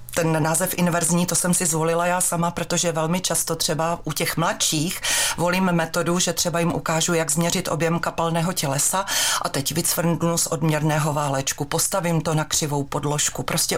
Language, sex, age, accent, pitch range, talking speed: Czech, female, 40-59, native, 155-175 Hz, 170 wpm